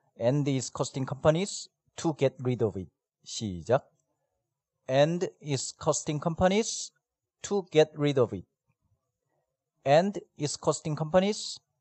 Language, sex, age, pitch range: Korean, male, 40-59, 125-160 Hz